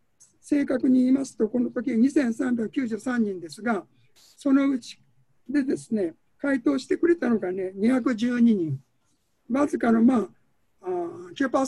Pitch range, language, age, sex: 190-275 Hz, Japanese, 60-79, male